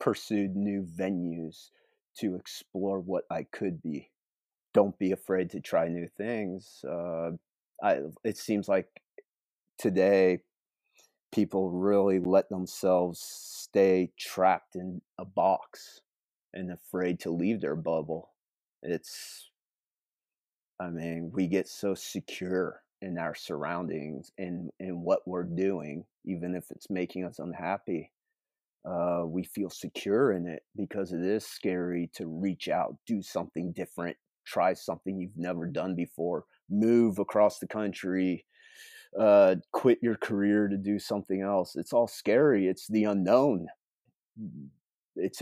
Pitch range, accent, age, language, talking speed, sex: 90-100 Hz, American, 30-49, English, 130 wpm, male